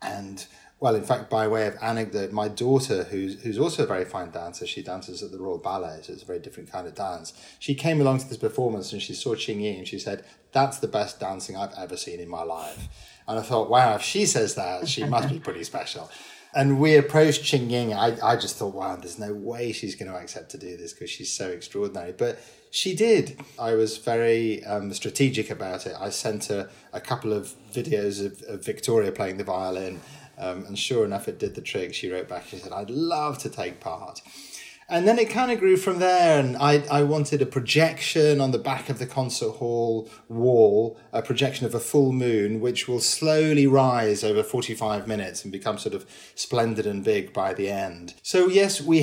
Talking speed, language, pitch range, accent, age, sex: 220 wpm, English, 105-145 Hz, British, 30-49, male